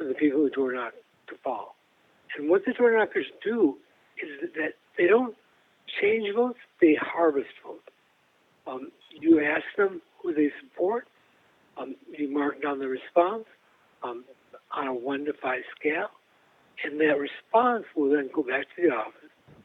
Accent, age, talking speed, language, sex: American, 60-79, 160 wpm, English, male